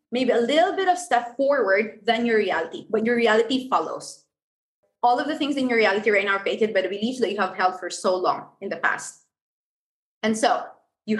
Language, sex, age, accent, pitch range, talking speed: English, female, 20-39, Filipino, 215-260 Hz, 220 wpm